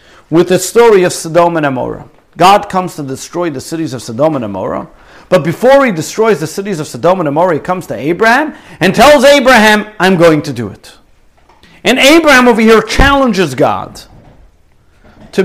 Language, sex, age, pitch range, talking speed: English, male, 50-69, 140-205 Hz, 180 wpm